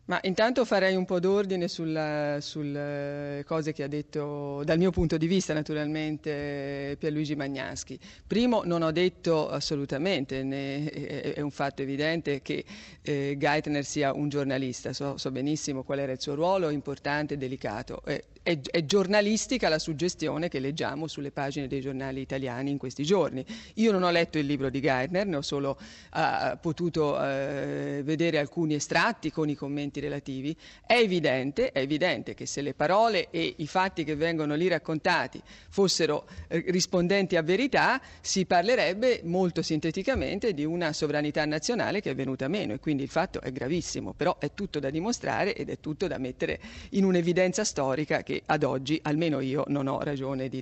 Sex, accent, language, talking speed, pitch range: female, native, Italian, 170 wpm, 140-170 Hz